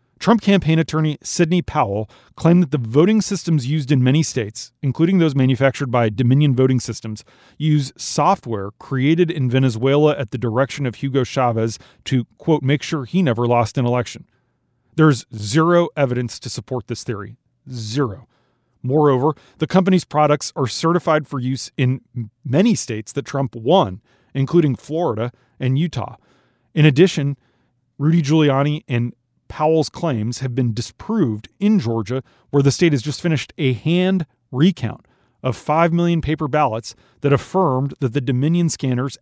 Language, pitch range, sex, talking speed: English, 120-155 Hz, male, 150 wpm